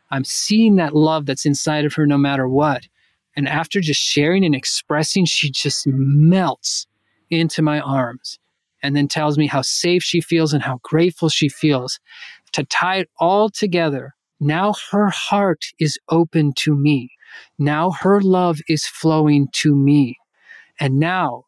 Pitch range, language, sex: 145-180 Hz, English, male